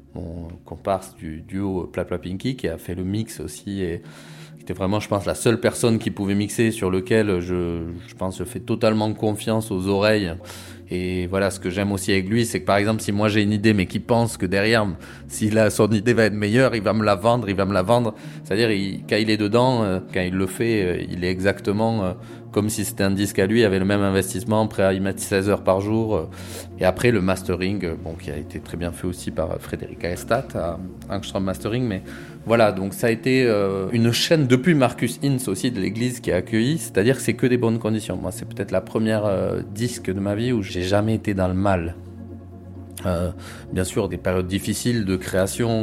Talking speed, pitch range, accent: 235 wpm, 95-115 Hz, French